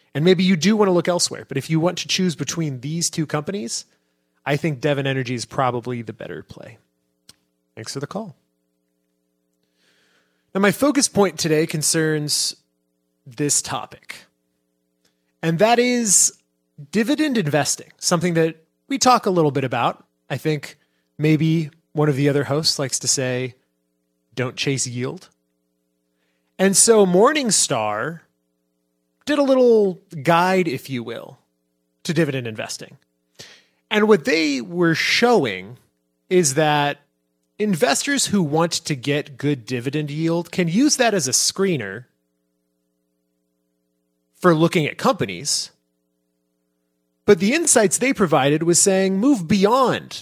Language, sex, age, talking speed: English, male, 30-49, 135 wpm